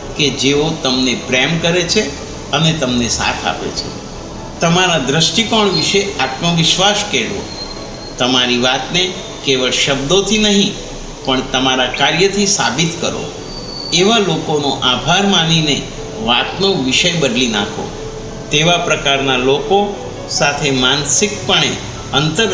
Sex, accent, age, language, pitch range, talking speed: male, native, 60-79, Gujarati, 135-185 Hz, 90 wpm